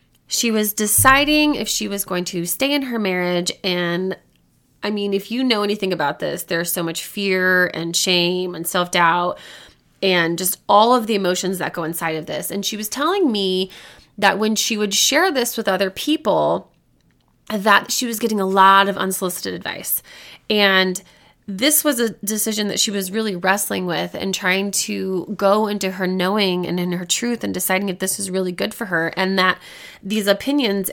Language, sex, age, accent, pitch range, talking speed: English, female, 20-39, American, 180-215 Hz, 190 wpm